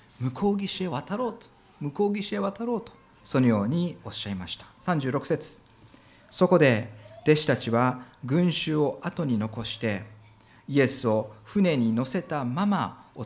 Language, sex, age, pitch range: Japanese, male, 40-59, 110-170 Hz